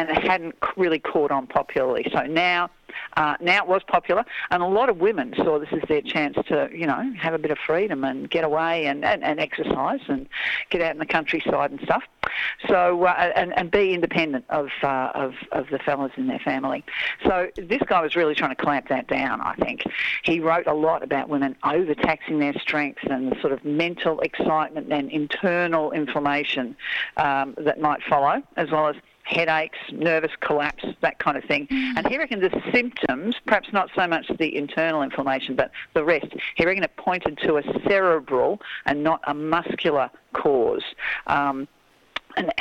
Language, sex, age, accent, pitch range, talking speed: English, female, 50-69, Australian, 150-195 Hz, 190 wpm